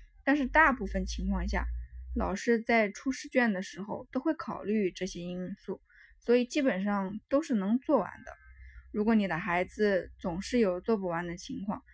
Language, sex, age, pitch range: Chinese, female, 10-29, 180-235 Hz